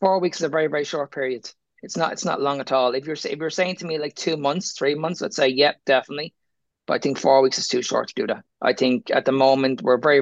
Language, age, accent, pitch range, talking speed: English, 20-39, Irish, 125-155 Hz, 290 wpm